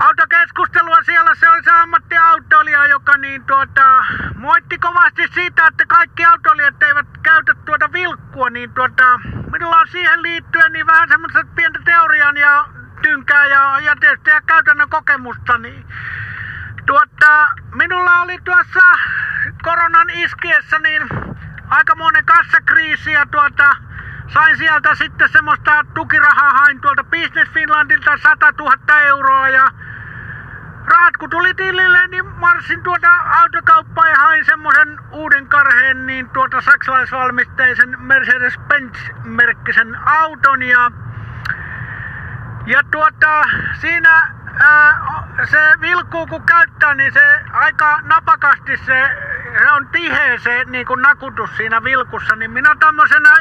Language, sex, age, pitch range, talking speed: Finnish, male, 60-79, 275-340 Hz, 115 wpm